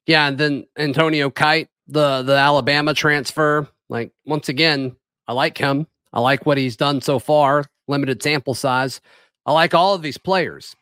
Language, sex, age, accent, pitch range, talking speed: English, male, 40-59, American, 145-180 Hz, 170 wpm